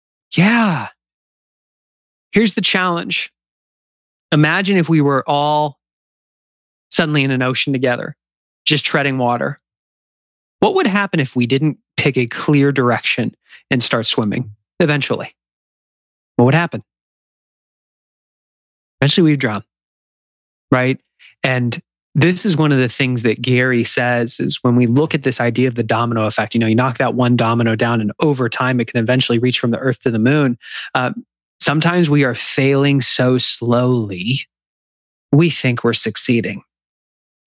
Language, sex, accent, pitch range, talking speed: English, male, American, 115-145 Hz, 145 wpm